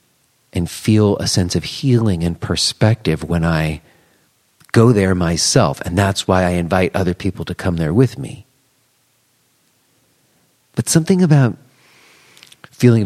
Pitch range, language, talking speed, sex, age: 95-120 Hz, English, 135 wpm, male, 40-59